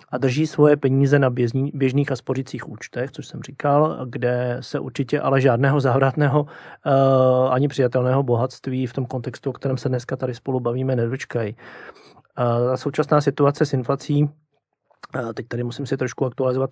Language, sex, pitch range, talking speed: Slovak, male, 130-145 Hz, 150 wpm